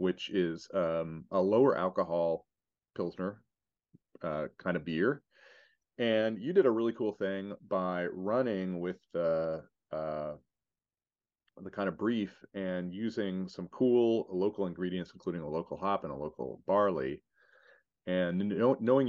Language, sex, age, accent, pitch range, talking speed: English, male, 30-49, American, 80-100 Hz, 140 wpm